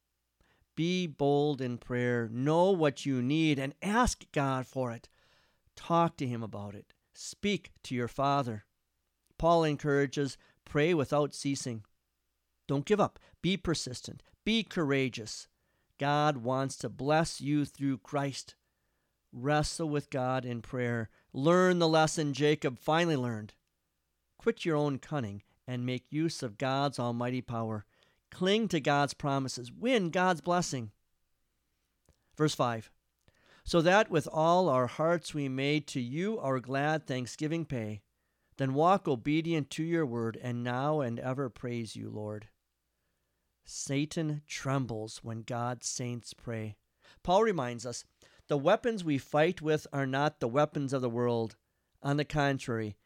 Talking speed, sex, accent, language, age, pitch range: 140 wpm, male, American, English, 50-69, 115-150 Hz